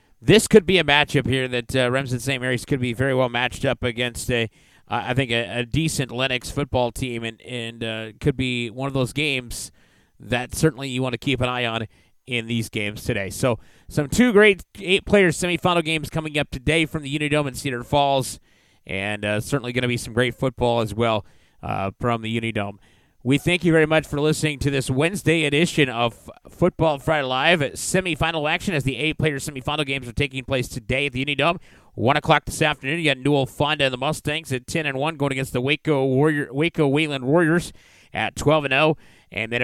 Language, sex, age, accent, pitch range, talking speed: English, male, 30-49, American, 120-150 Hz, 215 wpm